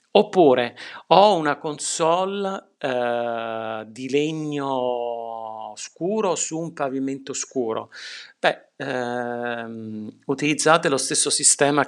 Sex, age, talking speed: male, 50-69, 90 wpm